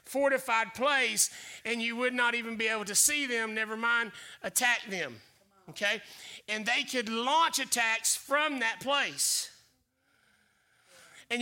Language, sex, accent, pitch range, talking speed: English, male, American, 225-295 Hz, 135 wpm